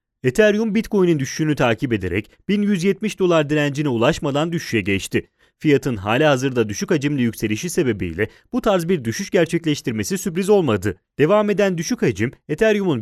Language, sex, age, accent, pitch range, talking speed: Italian, male, 30-49, Turkish, 115-190 Hz, 140 wpm